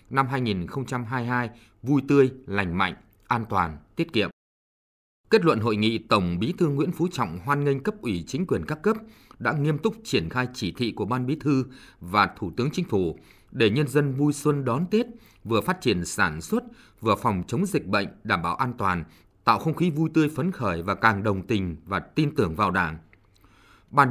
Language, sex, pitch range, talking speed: Vietnamese, male, 100-145 Hz, 205 wpm